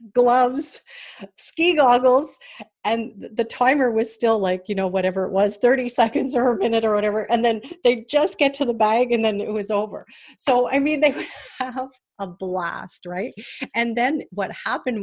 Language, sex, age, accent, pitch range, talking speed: English, female, 40-59, American, 195-255 Hz, 190 wpm